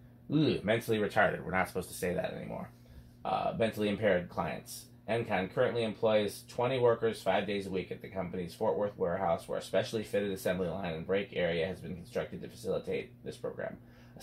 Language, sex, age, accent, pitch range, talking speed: English, male, 30-49, American, 105-120 Hz, 195 wpm